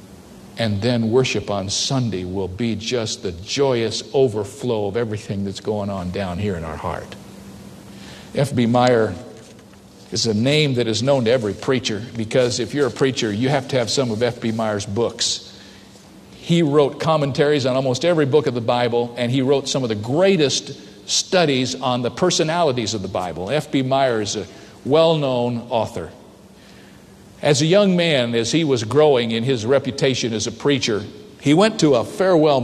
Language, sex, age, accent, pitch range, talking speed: English, male, 50-69, American, 115-150 Hz, 175 wpm